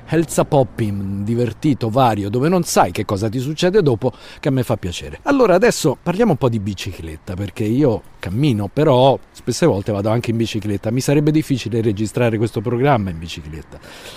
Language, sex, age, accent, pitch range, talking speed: Italian, male, 50-69, native, 100-130 Hz, 180 wpm